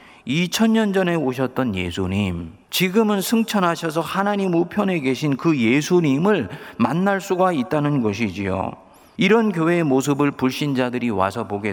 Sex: male